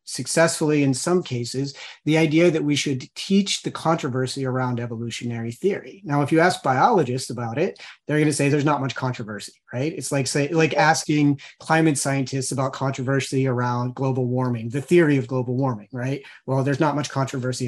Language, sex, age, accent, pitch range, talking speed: English, male, 30-49, American, 130-160 Hz, 180 wpm